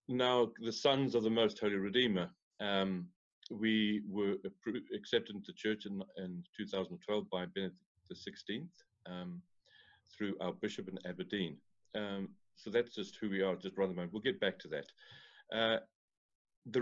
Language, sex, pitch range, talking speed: English, male, 95-115 Hz, 160 wpm